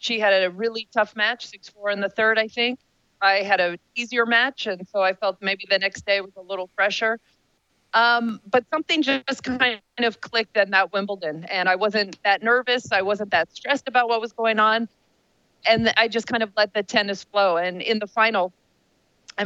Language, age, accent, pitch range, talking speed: English, 40-59, American, 195-225 Hz, 205 wpm